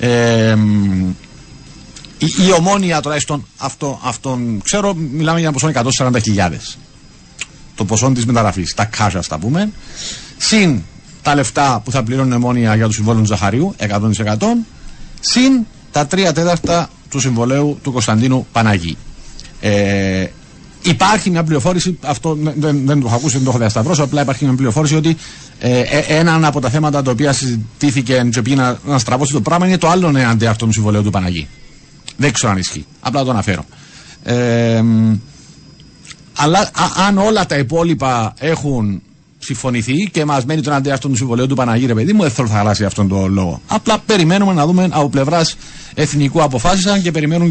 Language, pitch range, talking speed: Greek, 115-160 Hz, 165 wpm